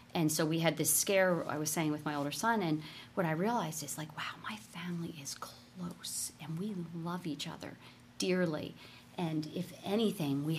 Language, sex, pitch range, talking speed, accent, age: English, female, 145-175 Hz, 195 wpm, American, 40-59